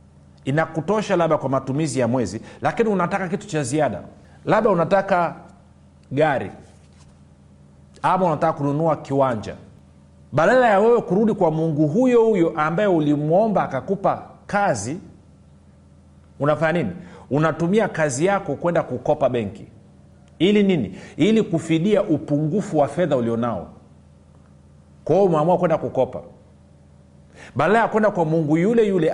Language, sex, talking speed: Swahili, male, 115 wpm